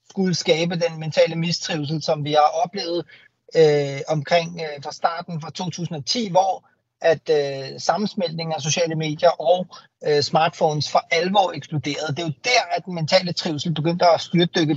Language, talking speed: Danish, 160 wpm